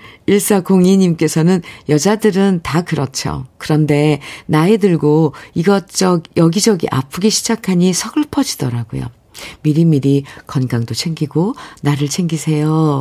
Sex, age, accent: female, 50-69, native